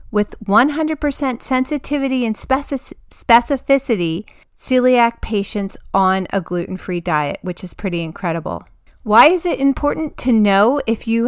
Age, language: 40-59, English